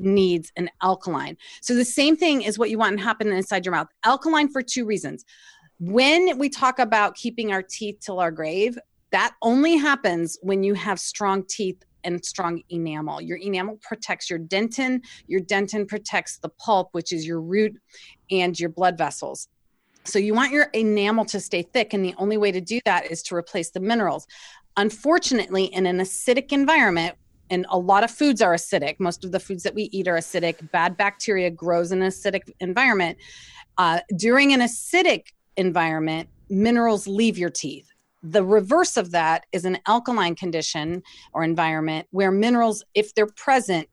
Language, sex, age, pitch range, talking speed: English, female, 30-49, 175-225 Hz, 180 wpm